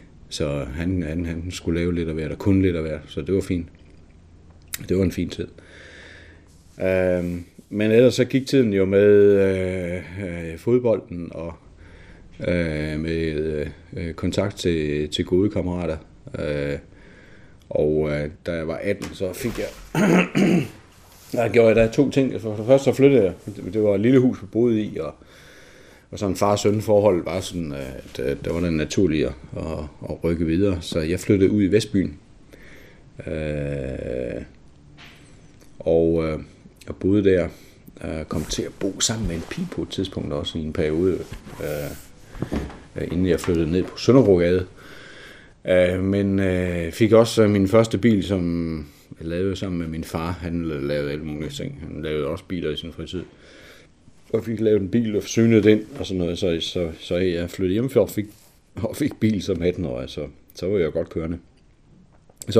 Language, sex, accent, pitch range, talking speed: Danish, male, native, 80-100 Hz, 170 wpm